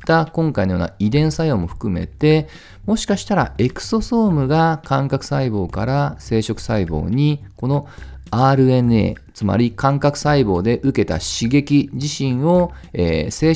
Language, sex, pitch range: Japanese, male, 100-155 Hz